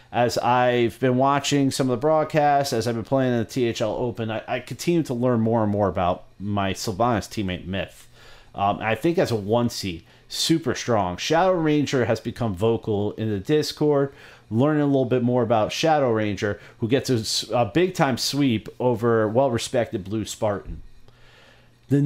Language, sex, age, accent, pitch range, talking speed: English, male, 30-49, American, 110-140 Hz, 175 wpm